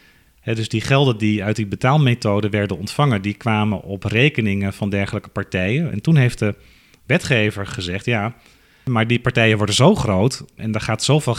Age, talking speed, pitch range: 40-59, 175 wpm, 105-130 Hz